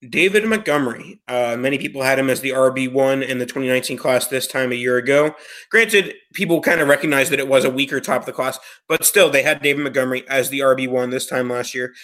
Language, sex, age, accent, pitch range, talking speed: English, male, 20-39, American, 130-145 Hz, 230 wpm